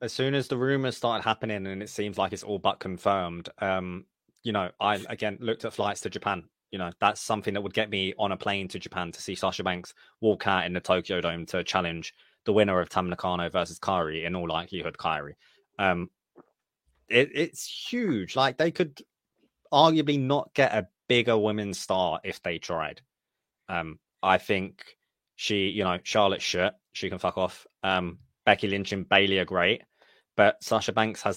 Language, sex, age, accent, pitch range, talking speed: English, male, 20-39, British, 95-110 Hz, 195 wpm